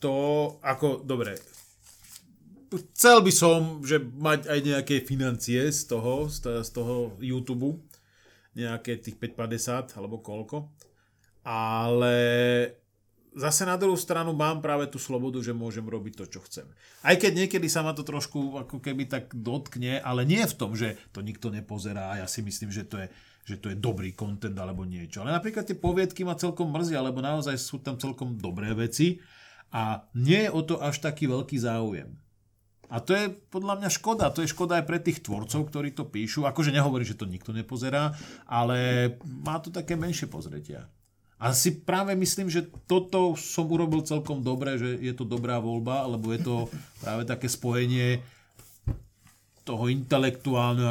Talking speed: 170 wpm